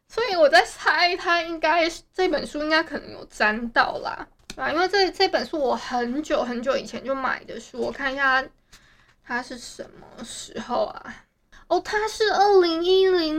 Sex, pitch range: female, 250-330 Hz